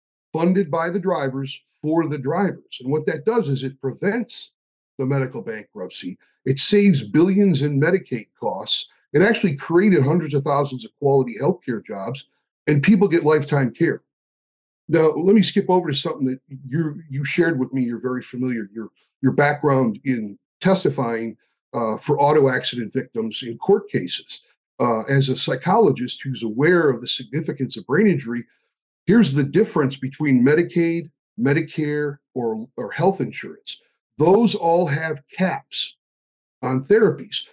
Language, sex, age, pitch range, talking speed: English, male, 50-69, 135-180 Hz, 150 wpm